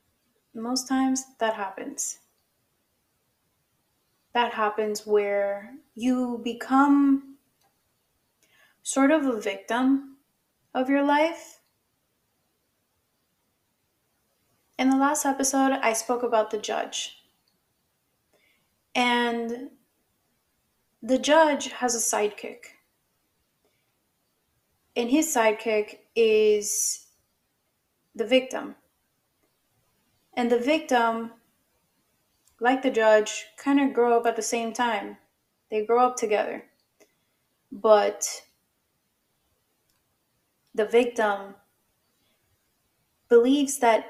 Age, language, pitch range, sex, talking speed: 20-39, English, 220-270 Hz, female, 80 wpm